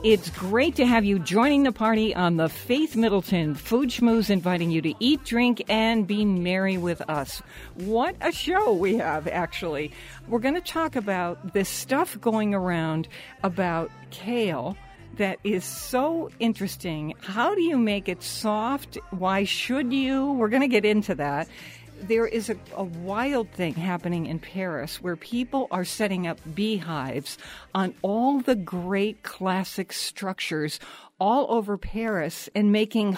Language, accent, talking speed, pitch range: English, American, 155 wpm, 175-225 Hz